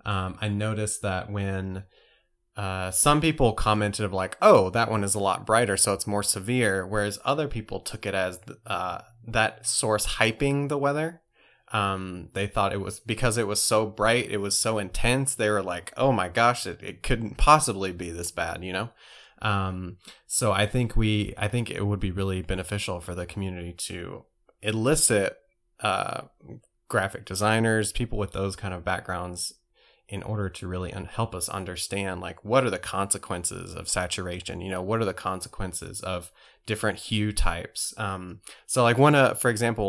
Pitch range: 95-115 Hz